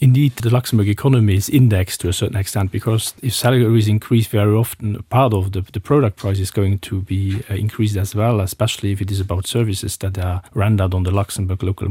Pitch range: 95-110 Hz